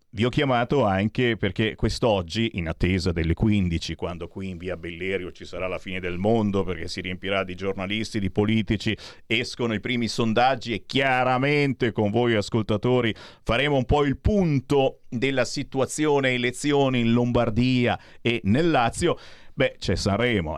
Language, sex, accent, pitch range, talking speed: Italian, male, native, 95-130 Hz, 155 wpm